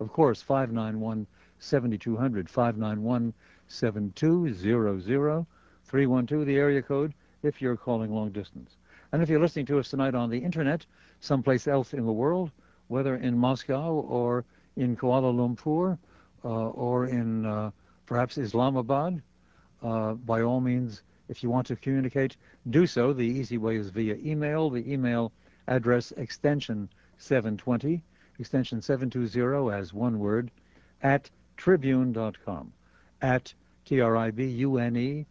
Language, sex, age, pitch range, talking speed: English, male, 60-79, 110-140 Hz, 120 wpm